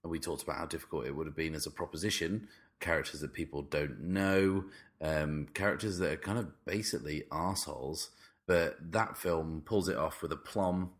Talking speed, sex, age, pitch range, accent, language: 185 wpm, male, 30-49, 75-100 Hz, British, English